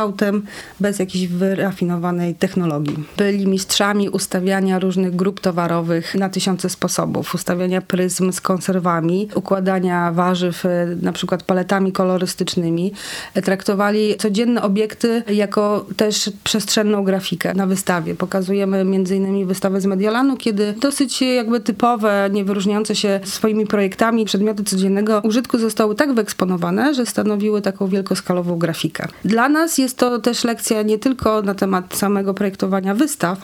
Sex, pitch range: female, 185-210 Hz